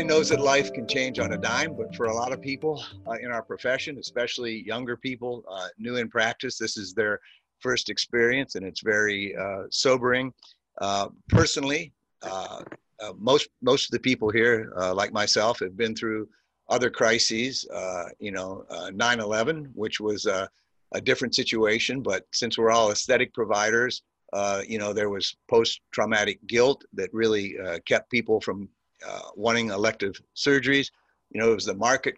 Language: English